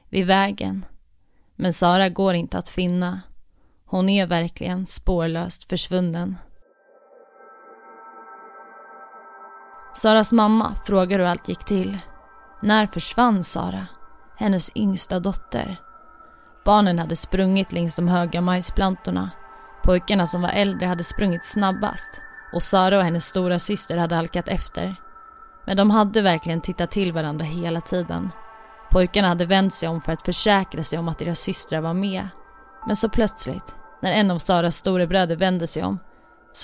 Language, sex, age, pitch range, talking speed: Swedish, female, 20-39, 170-200 Hz, 140 wpm